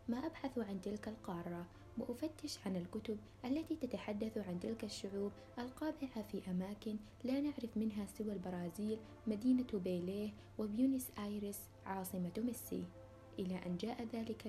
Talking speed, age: 130 wpm, 20-39